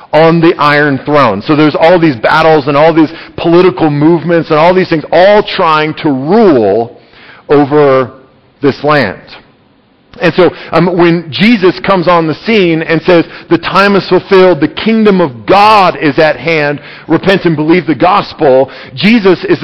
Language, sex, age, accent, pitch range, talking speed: English, male, 40-59, American, 155-190 Hz, 165 wpm